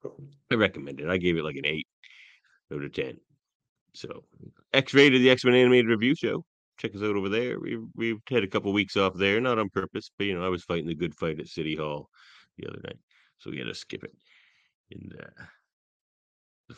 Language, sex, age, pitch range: English, male, 30-49, 80-110 Hz